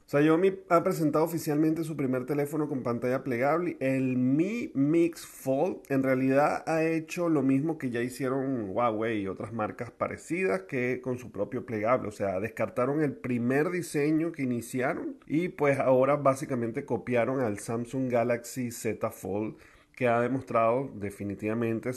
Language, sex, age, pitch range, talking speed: Spanish, male, 40-59, 115-140 Hz, 150 wpm